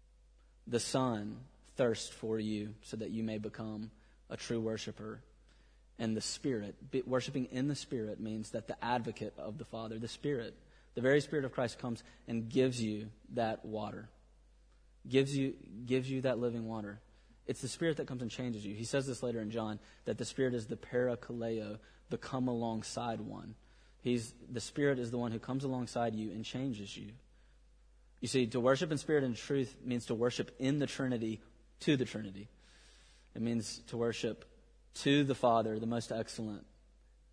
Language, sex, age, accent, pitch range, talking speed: English, male, 30-49, American, 105-125 Hz, 180 wpm